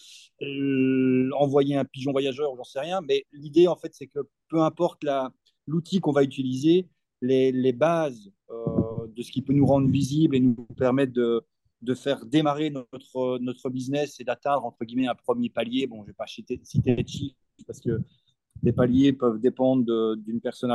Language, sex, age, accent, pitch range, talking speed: French, male, 30-49, French, 125-145 Hz, 185 wpm